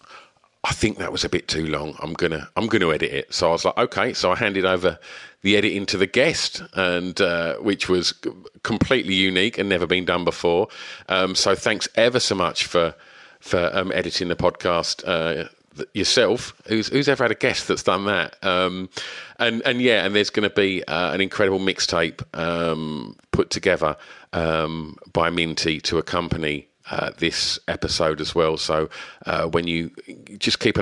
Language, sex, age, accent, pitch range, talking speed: English, male, 40-59, British, 80-95 Hz, 195 wpm